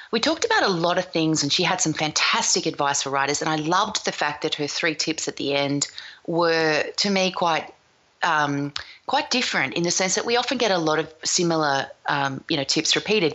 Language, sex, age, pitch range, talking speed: English, female, 30-49, 155-220 Hz, 225 wpm